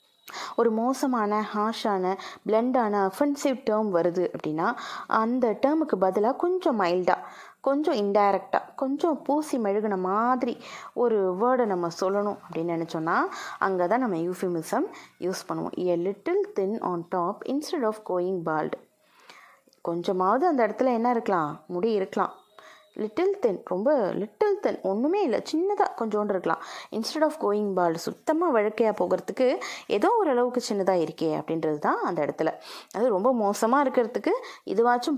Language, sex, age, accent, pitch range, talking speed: Tamil, female, 20-39, native, 185-255 Hz, 130 wpm